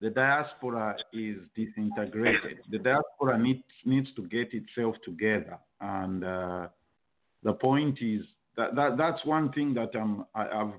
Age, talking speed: 50-69, 145 wpm